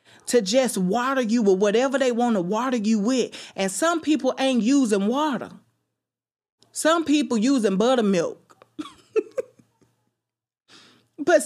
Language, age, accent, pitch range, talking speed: English, 30-49, American, 210-280 Hz, 120 wpm